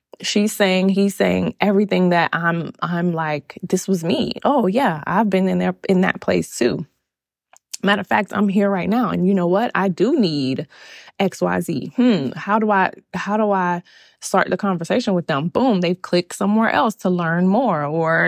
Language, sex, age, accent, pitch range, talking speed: English, female, 20-39, American, 175-220 Hz, 195 wpm